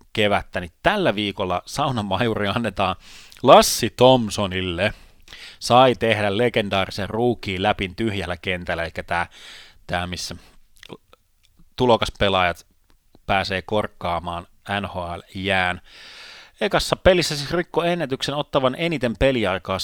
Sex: male